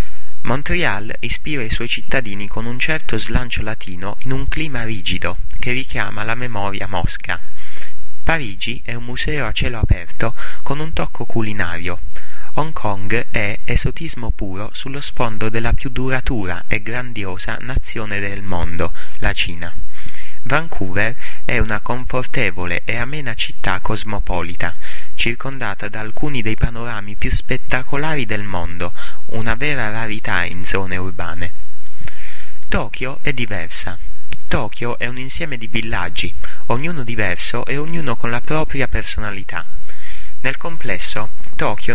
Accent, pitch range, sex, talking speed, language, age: native, 95-125 Hz, male, 130 wpm, Italian, 30-49